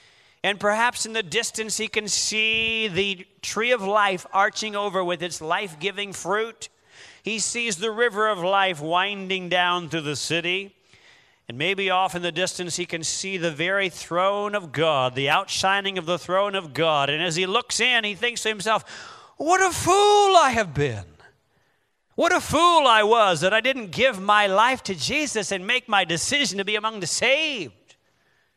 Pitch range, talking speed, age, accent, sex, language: 180-230 Hz, 185 wpm, 40-59, American, male, English